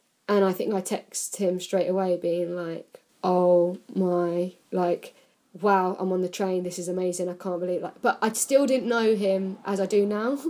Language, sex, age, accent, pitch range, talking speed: English, female, 10-29, British, 180-200 Hz, 200 wpm